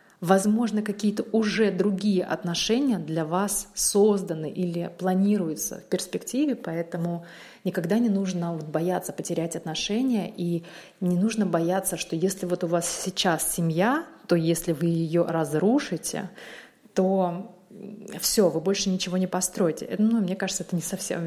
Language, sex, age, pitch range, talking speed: Russian, female, 30-49, 170-210 Hz, 140 wpm